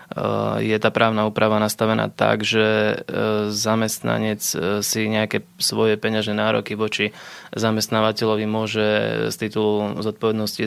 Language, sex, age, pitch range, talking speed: Slovak, male, 20-39, 105-110 Hz, 105 wpm